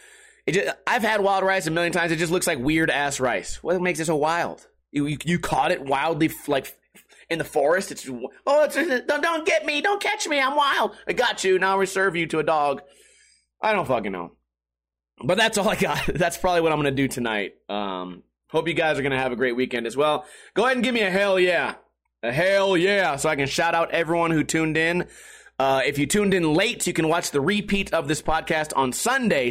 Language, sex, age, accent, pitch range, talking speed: English, male, 30-49, American, 150-210 Hz, 240 wpm